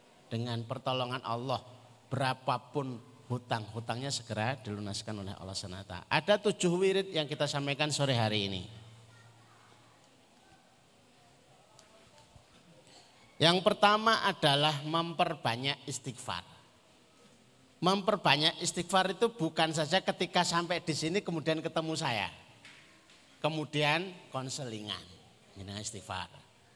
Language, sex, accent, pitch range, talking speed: Indonesian, male, native, 115-180 Hz, 85 wpm